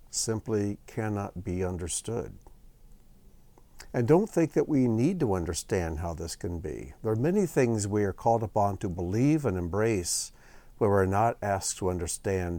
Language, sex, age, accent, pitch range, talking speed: English, male, 60-79, American, 90-135 Hz, 160 wpm